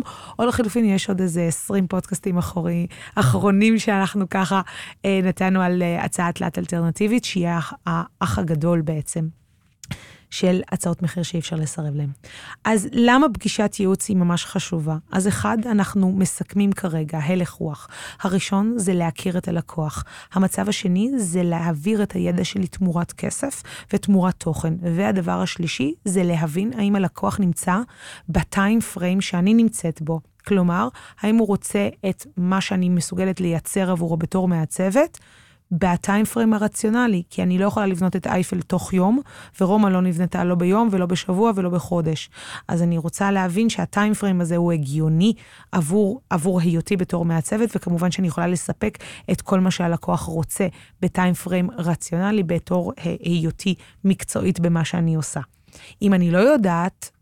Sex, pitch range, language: female, 170-200 Hz, Hebrew